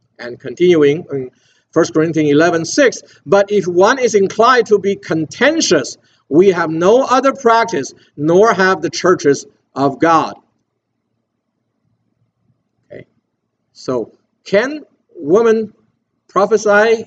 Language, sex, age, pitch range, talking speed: English, male, 50-69, 140-200 Hz, 110 wpm